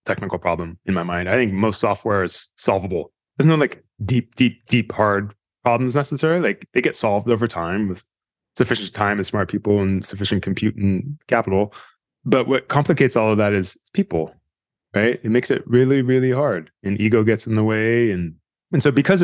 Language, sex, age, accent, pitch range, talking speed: English, male, 20-39, American, 100-130 Hz, 195 wpm